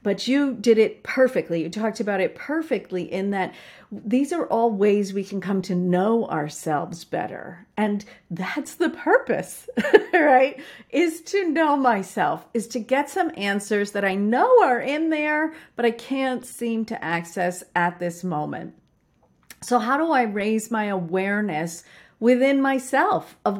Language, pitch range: English, 190-250 Hz